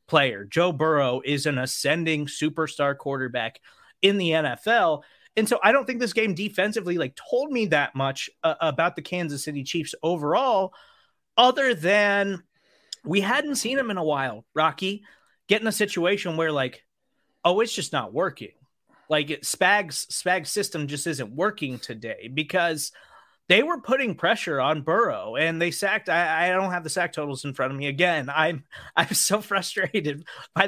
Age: 30-49